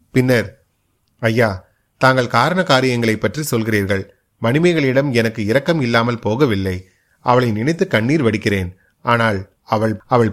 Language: Tamil